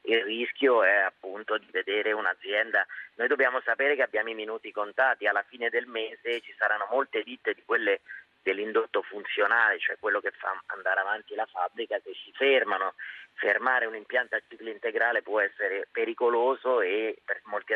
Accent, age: native, 30-49